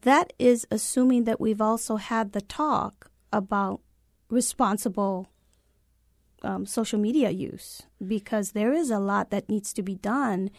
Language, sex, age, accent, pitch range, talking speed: English, female, 40-59, American, 200-250 Hz, 140 wpm